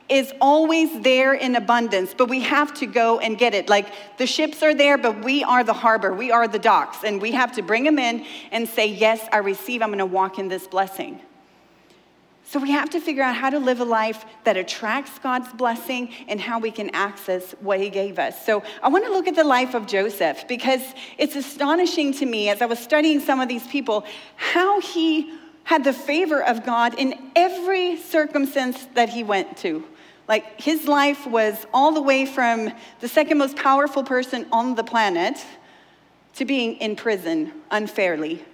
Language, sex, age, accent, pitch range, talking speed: English, female, 40-59, American, 215-280 Hz, 200 wpm